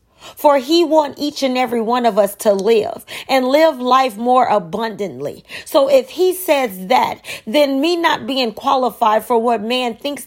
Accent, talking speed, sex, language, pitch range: American, 175 wpm, female, English, 225-280 Hz